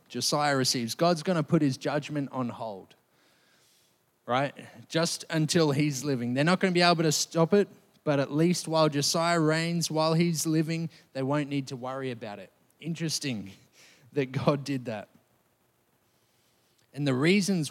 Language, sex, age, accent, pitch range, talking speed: English, male, 20-39, Australian, 130-160 Hz, 165 wpm